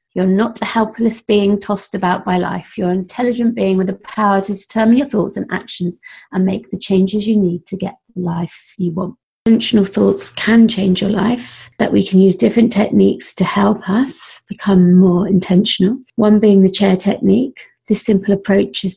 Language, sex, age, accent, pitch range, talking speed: English, female, 30-49, British, 185-210 Hz, 195 wpm